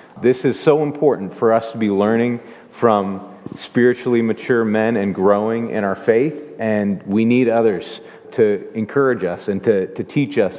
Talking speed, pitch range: 170 wpm, 110-135 Hz